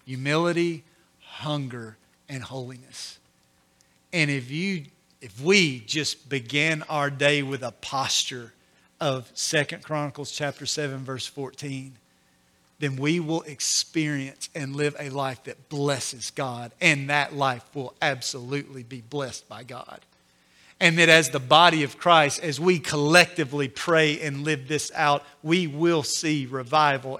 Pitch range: 130-155 Hz